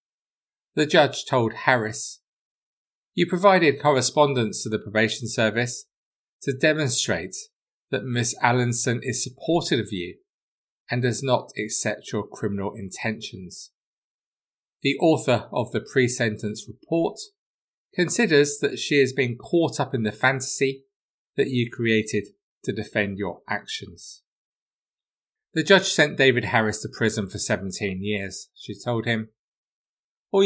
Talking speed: 125 wpm